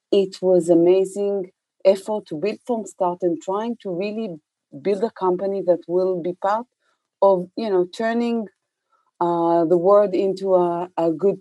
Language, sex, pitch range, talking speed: English, female, 160-195 Hz, 160 wpm